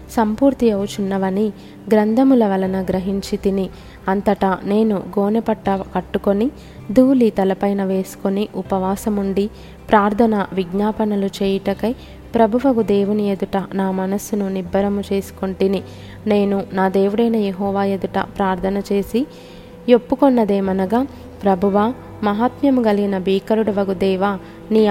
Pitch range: 195-220 Hz